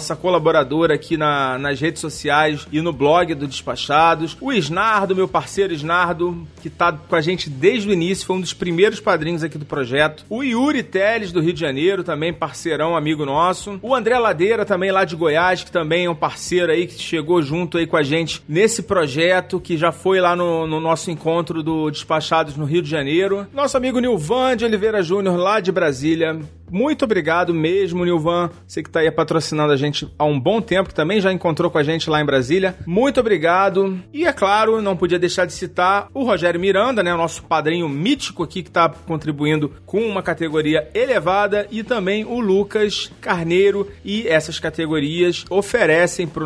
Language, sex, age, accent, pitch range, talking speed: Portuguese, male, 40-59, Brazilian, 155-195 Hz, 195 wpm